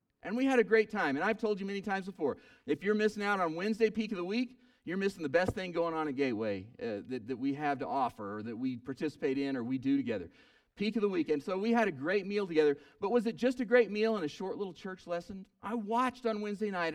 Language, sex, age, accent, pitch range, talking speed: English, male, 40-59, American, 160-235 Hz, 275 wpm